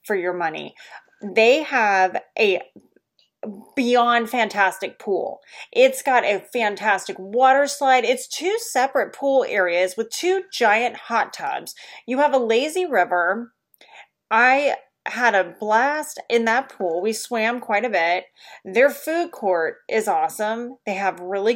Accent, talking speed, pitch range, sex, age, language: American, 140 wpm, 195-270 Hz, female, 30-49, English